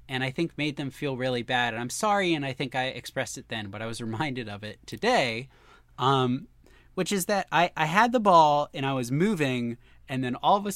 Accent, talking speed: American, 240 wpm